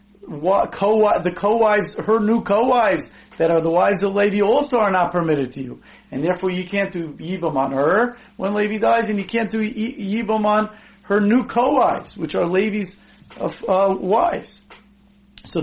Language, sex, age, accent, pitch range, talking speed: English, male, 40-59, American, 170-215 Hz, 175 wpm